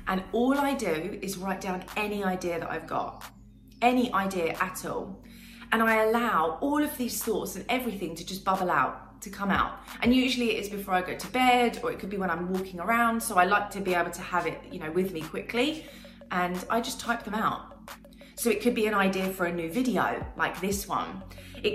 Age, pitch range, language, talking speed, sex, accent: 30-49, 185-240 Hz, English, 225 wpm, female, British